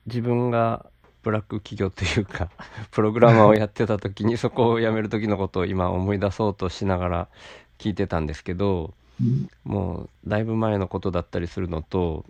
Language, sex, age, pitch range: Japanese, male, 40-59, 90-120 Hz